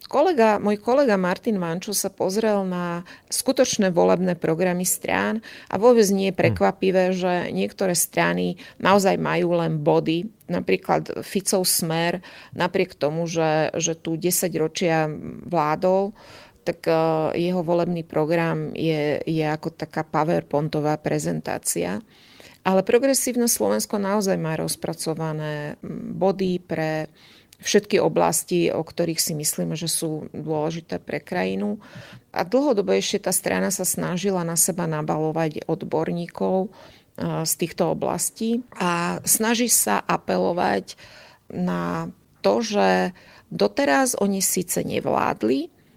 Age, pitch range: 30-49, 155-195 Hz